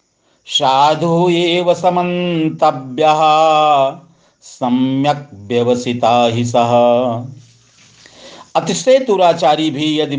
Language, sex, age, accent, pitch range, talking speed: Hindi, male, 50-69, native, 140-190 Hz, 65 wpm